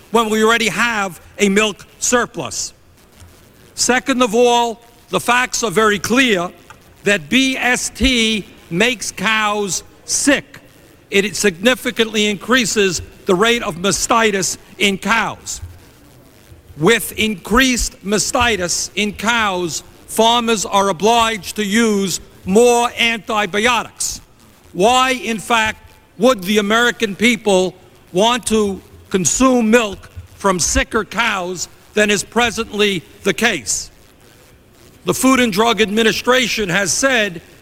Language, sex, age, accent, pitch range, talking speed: English, male, 60-79, American, 185-230 Hz, 105 wpm